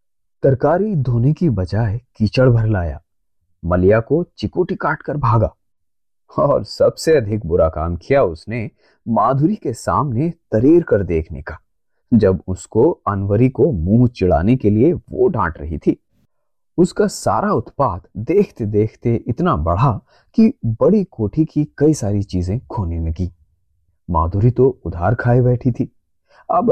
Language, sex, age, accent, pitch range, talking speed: Hindi, male, 30-49, native, 90-130 Hz, 135 wpm